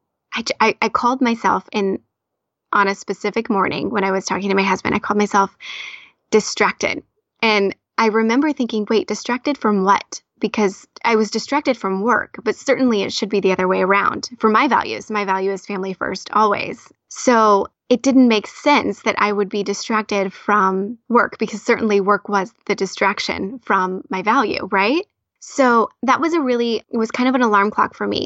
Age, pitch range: 20-39, 195-225 Hz